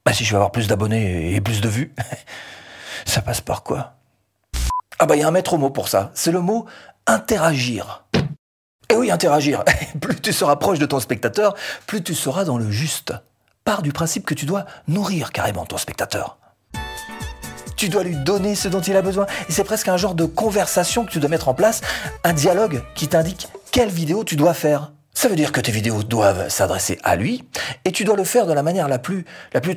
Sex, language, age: male, French, 40-59